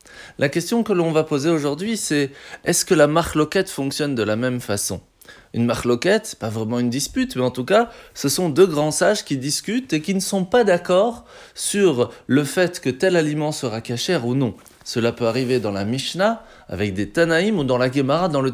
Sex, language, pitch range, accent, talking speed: male, French, 125-185 Hz, French, 215 wpm